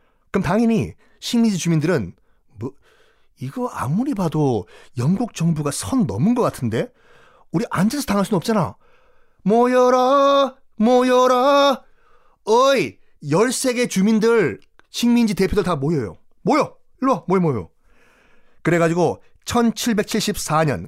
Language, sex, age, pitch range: Korean, male, 30-49, 155-240 Hz